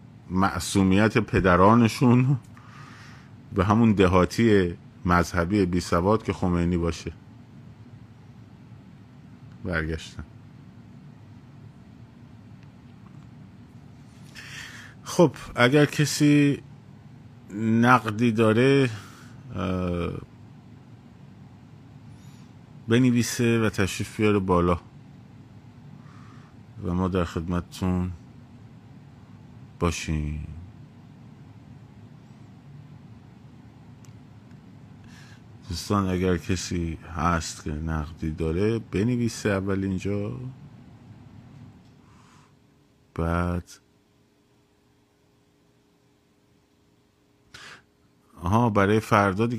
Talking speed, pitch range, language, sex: 50 wpm, 90-125 Hz, Persian, male